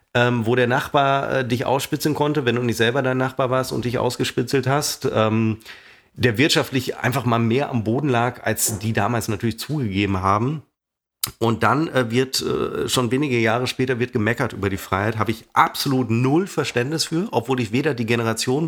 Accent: German